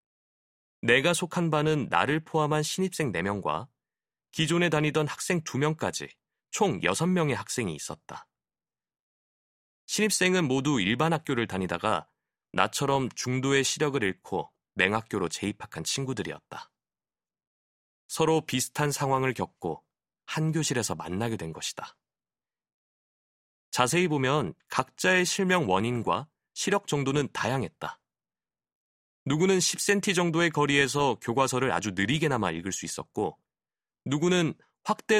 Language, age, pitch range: Korean, 30-49, 115-165 Hz